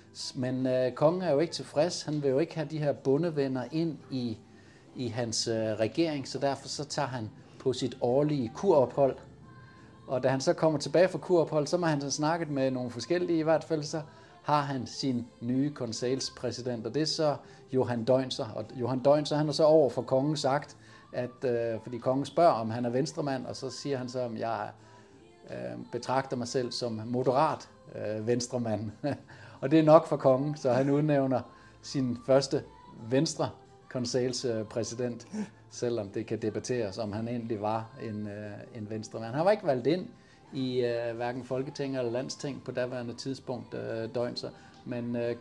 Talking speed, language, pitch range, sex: 180 wpm, Danish, 115-140 Hz, male